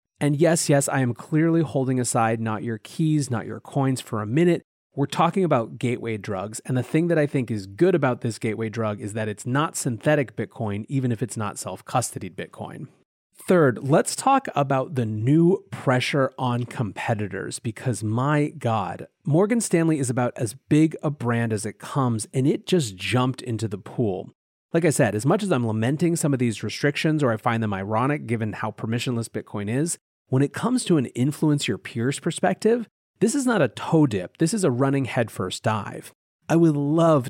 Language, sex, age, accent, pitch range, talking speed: English, male, 30-49, American, 110-150 Hz, 195 wpm